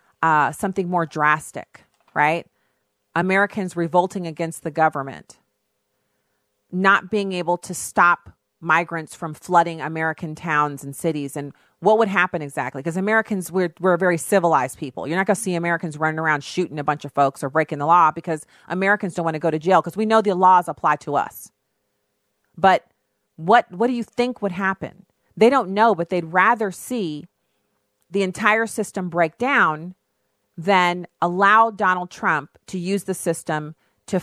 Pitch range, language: 135-190 Hz, English